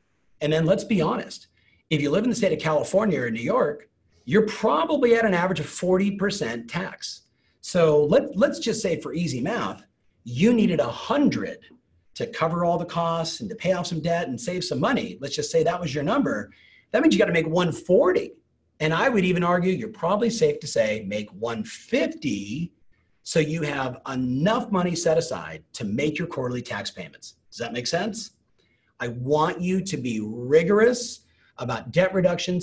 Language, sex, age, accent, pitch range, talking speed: English, male, 40-59, American, 125-195 Hz, 185 wpm